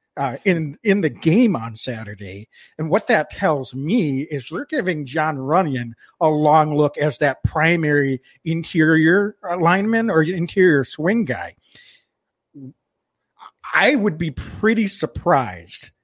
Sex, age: male, 50-69